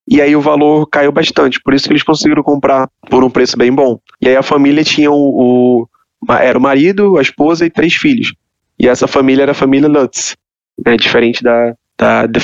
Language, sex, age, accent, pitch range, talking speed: Portuguese, male, 20-39, Brazilian, 125-150 Hz, 210 wpm